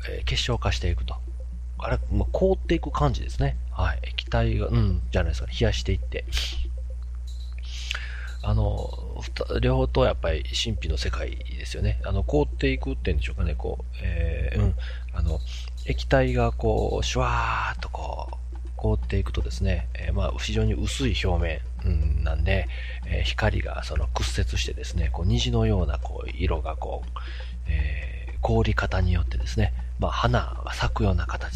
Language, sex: Japanese, male